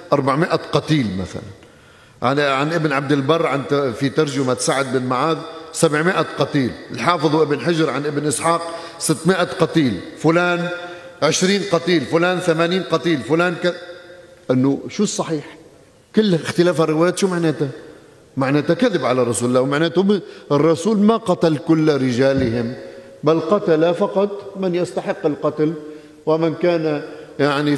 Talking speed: 130 wpm